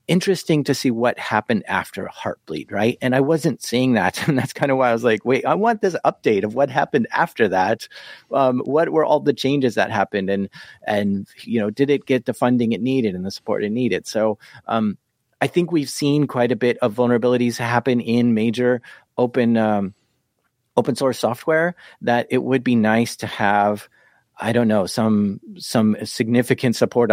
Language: English